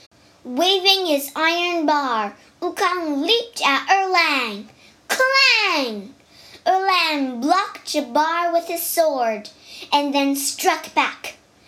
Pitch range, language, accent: 270-355 Hz, Chinese, American